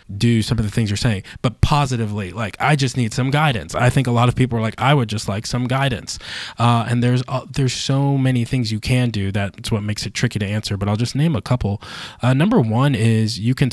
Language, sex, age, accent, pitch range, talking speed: English, male, 20-39, American, 105-120 Hz, 260 wpm